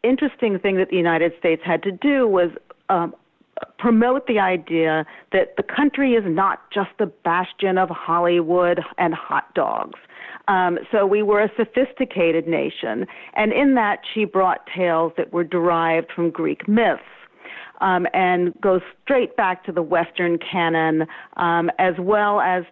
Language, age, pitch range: English, 40-59, 165-200 Hz